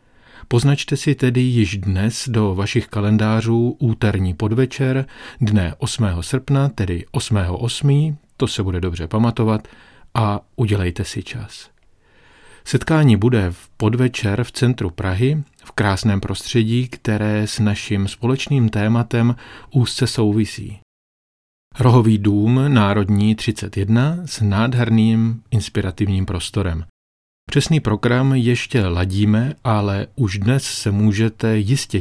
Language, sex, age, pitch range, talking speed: Czech, male, 40-59, 100-120 Hz, 110 wpm